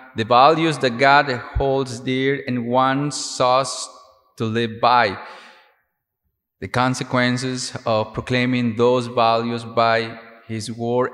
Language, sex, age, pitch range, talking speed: English, male, 30-49, 115-135 Hz, 115 wpm